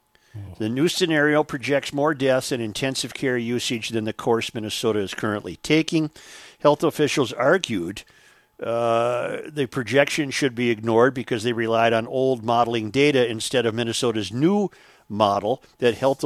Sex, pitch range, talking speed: male, 115-145 Hz, 150 wpm